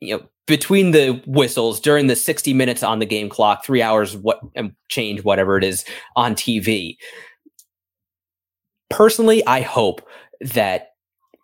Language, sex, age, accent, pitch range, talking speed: English, male, 20-39, American, 105-150 Hz, 135 wpm